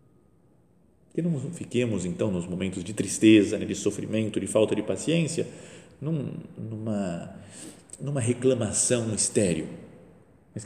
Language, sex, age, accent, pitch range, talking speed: Portuguese, male, 40-59, Brazilian, 85-130 Hz, 120 wpm